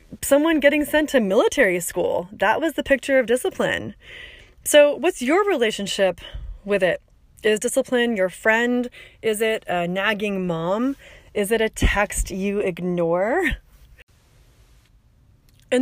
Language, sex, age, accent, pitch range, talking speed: English, female, 20-39, American, 190-255 Hz, 130 wpm